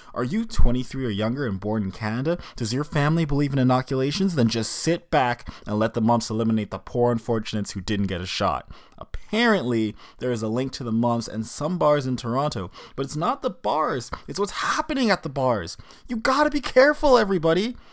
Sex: male